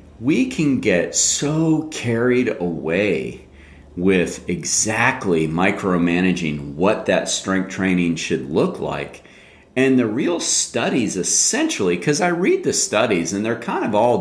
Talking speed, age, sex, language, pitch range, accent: 130 wpm, 40-59, male, English, 80-125 Hz, American